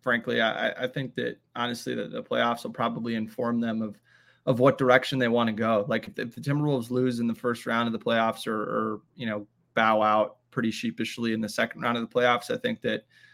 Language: English